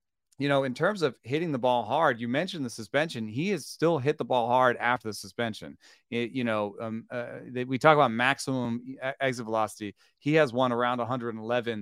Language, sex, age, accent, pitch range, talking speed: English, male, 30-49, American, 110-130 Hz, 205 wpm